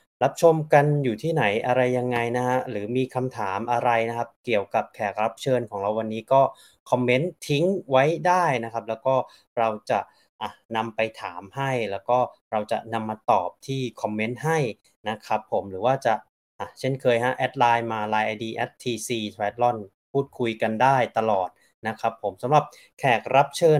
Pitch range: 115-140 Hz